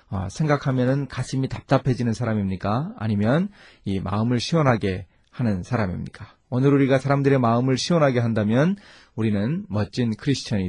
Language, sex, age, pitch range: Korean, male, 30-49, 105-145 Hz